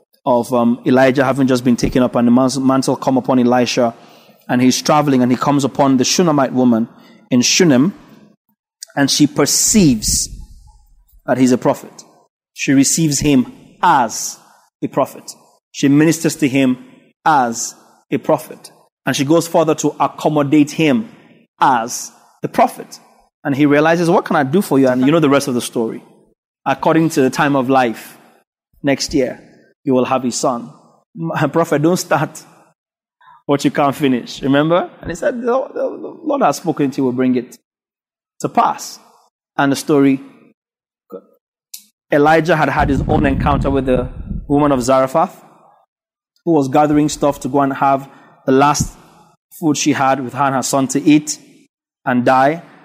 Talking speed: 165 wpm